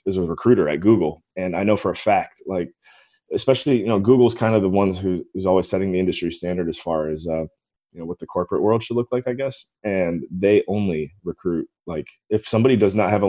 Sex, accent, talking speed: male, American, 240 wpm